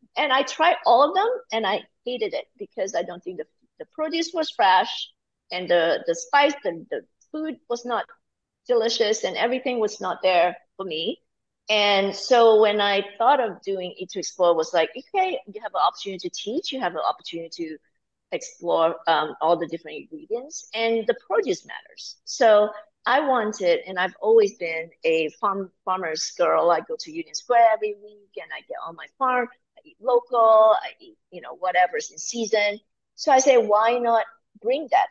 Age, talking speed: 40-59, 190 wpm